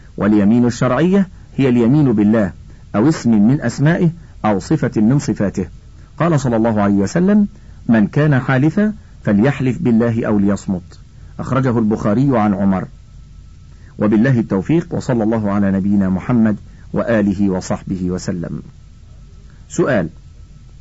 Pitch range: 105-150 Hz